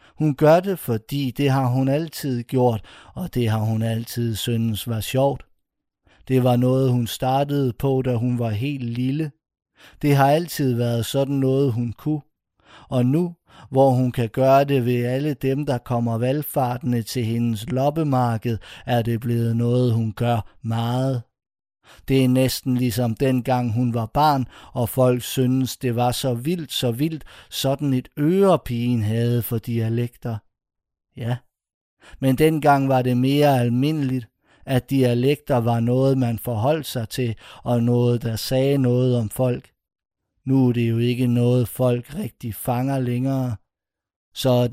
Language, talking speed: Danish, 155 wpm